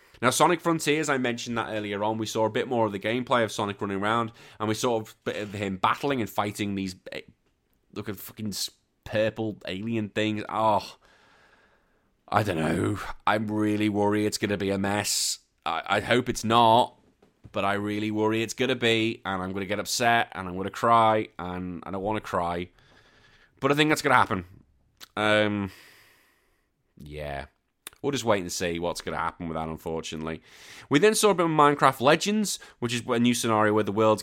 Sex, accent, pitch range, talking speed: male, British, 100-125 Hz, 200 wpm